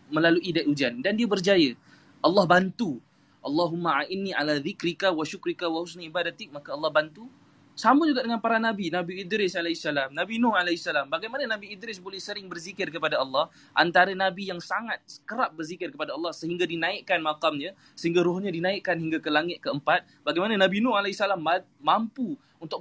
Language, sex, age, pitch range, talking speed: Malay, male, 20-39, 135-185 Hz, 165 wpm